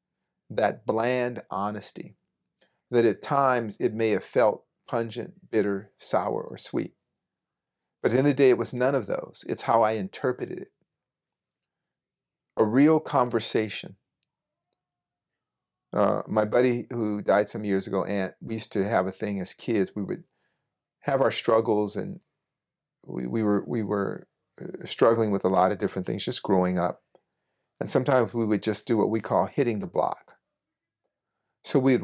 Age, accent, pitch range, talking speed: 40-59, American, 105-125 Hz, 160 wpm